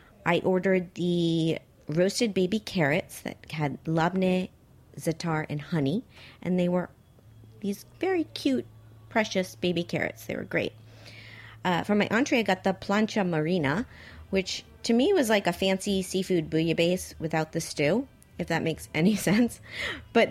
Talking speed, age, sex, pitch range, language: 150 wpm, 40-59, female, 145-190 Hz, English